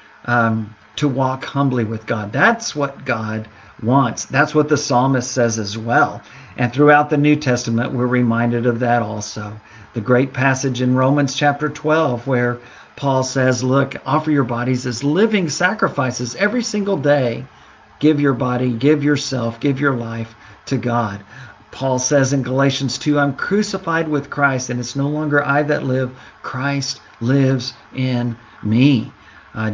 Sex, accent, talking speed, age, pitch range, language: male, American, 155 wpm, 50-69, 120-145 Hz, English